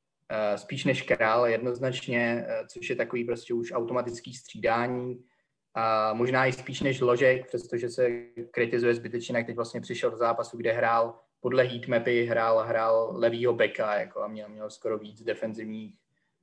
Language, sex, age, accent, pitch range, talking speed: Czech, male, 20-39, native, 110-120 Hz, 155 wpm